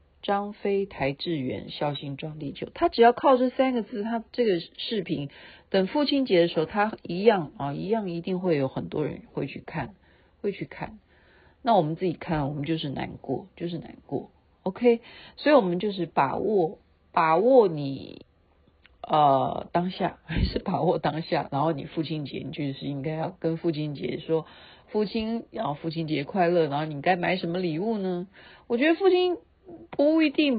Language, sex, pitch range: Chinese, female, 155-225 Hz